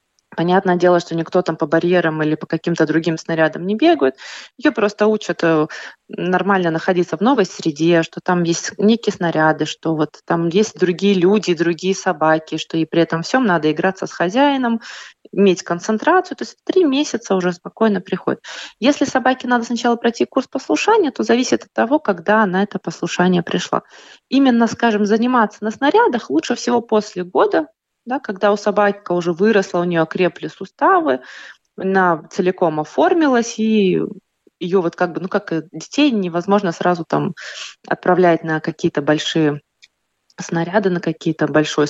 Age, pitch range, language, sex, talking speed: 20-39, 170-230 Hz, Russian, female, 155 wpm